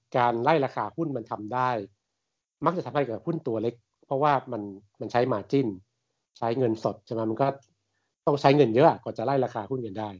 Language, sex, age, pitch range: Thai, male, 60-79, 110-145 Hz